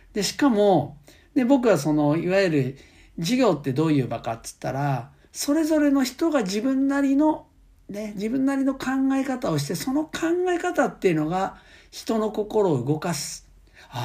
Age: 50-69